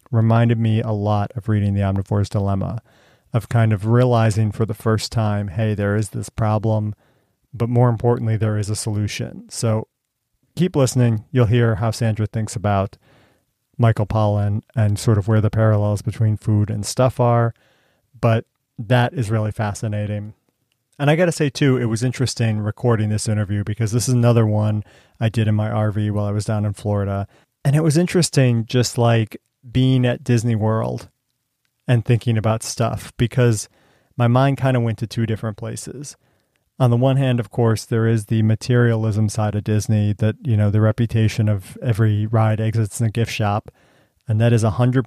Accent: American